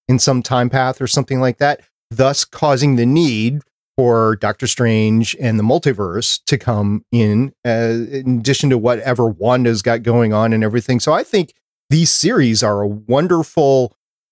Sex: male